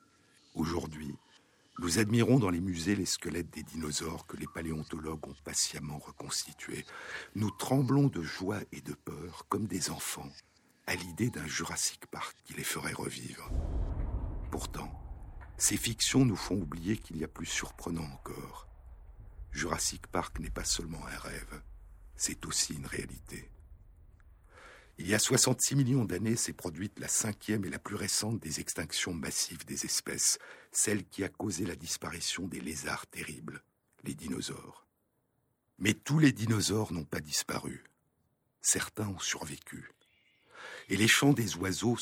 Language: French